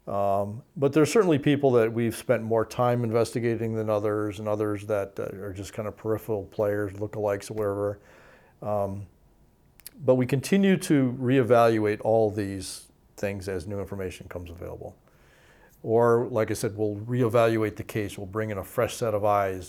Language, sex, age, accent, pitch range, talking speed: English, male, 40-59, American, 100-130 Hz, 170 wpm